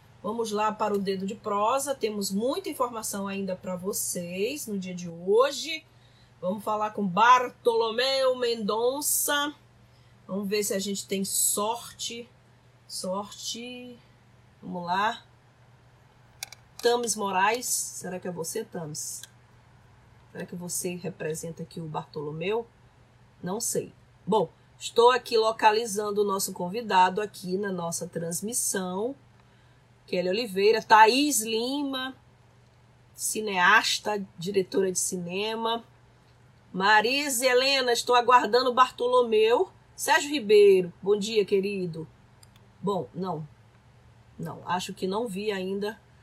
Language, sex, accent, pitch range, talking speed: Portuguese, female, Brazilian, 180-235 Hz, 110 wpm